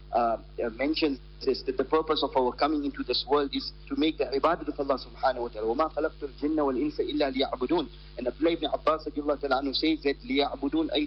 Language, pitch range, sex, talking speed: English, 140-175 Hz, male, 205 wpm